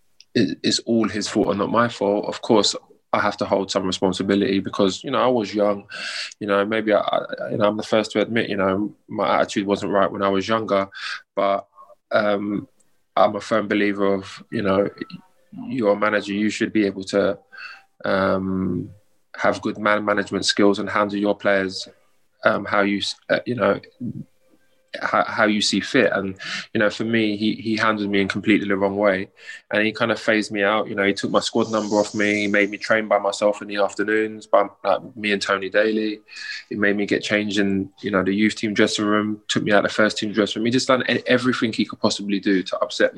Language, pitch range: English, 100-110 Hz